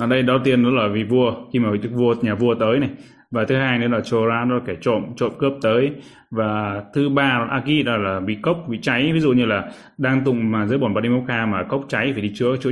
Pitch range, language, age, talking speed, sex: 110-125 Hz, Vietnamese, 20-39, 250 wpm, male